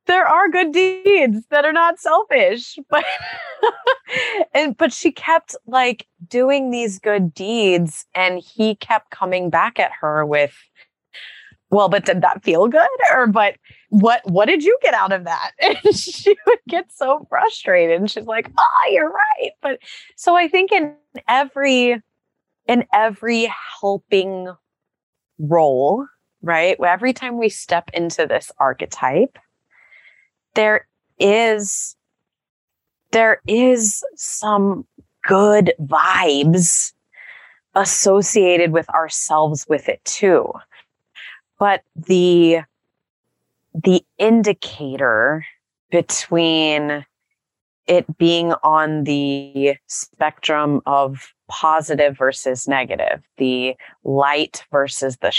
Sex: female